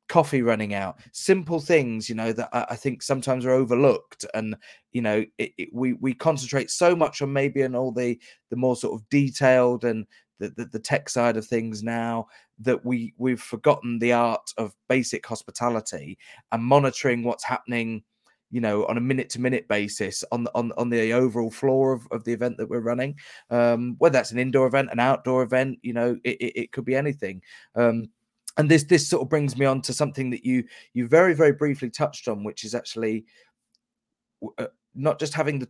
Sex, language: male, English